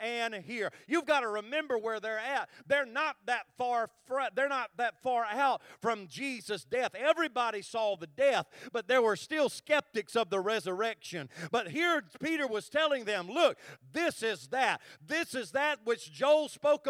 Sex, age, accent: male, 40-59, American